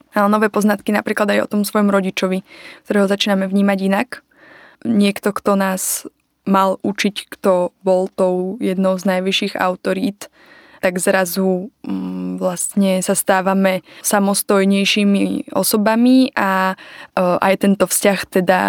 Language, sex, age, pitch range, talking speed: Slovak, female, 20-39, 190-220 Hz, 120 wpm